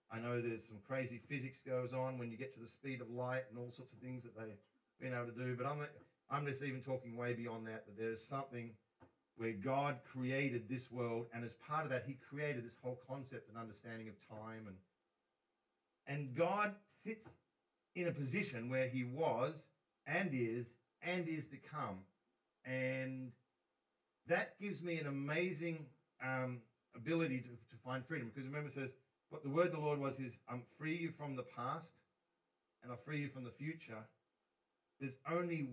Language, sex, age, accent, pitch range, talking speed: English, male, 40-59, Australian, 120-150 Hz, 190 wpm